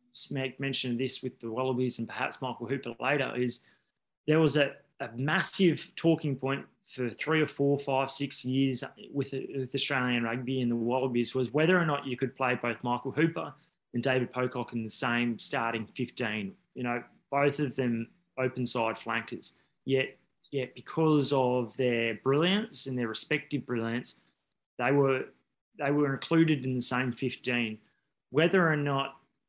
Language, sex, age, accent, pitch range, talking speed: English, male, 20-39, Australian, 125-140 Hz, 165 wpm